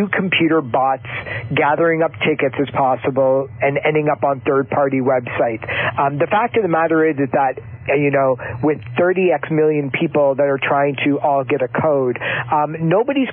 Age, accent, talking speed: 50-69, American, 170 wpm